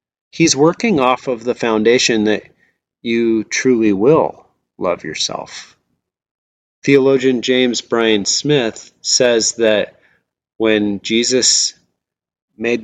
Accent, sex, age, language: American, male, 30-49, English